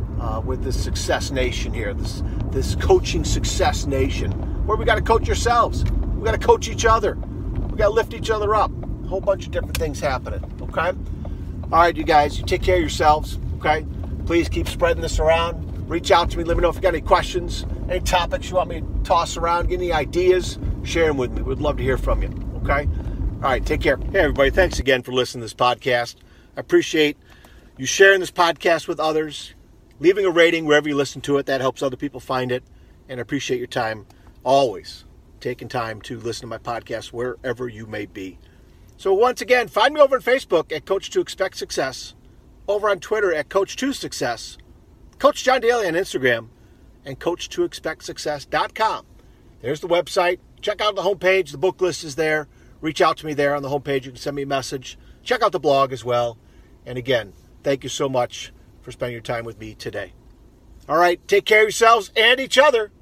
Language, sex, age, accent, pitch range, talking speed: English, male, 50-69, American, 110-185 Hz, 205 wpm